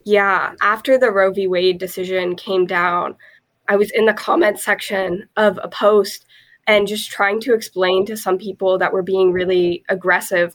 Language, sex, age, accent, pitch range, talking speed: English, female, 20-39, American, 185-215 Hz, 175 wpm